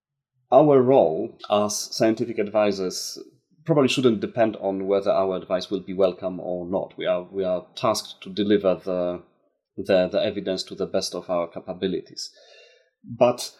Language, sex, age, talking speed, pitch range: English, male, 30-49, 155 wpm, 100-125 Hz